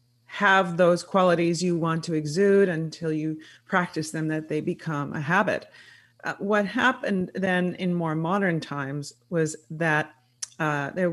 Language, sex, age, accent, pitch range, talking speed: English, female, 40-59, American, 145-180 Hz, 150 wpm